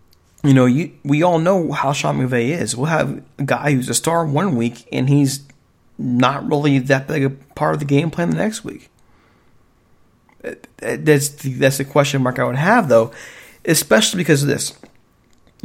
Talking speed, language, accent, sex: 190 wpm, English, American, male